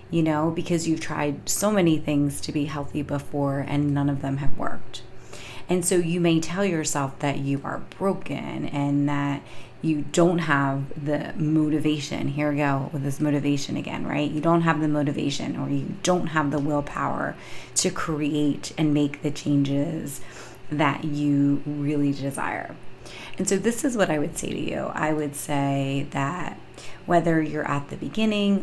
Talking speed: 175 wpm